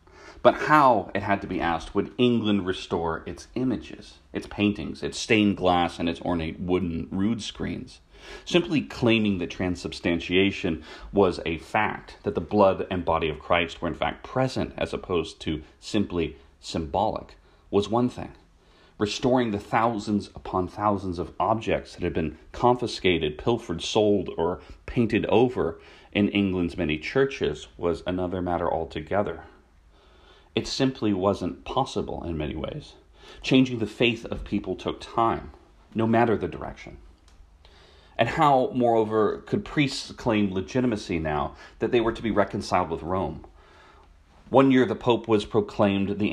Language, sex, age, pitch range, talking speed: English, male, 30-49, 85-110 Hz, 150 wpm